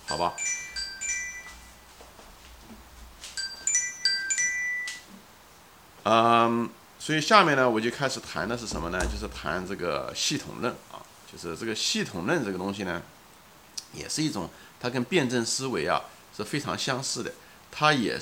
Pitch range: 110-160 Hz